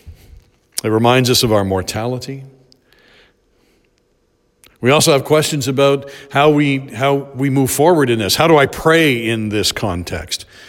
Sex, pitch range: male, 100-135 Hz